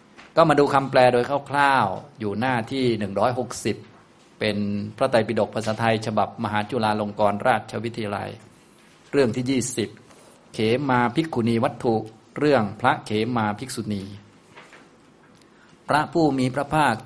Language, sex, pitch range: Thai, male, 105-130 Hz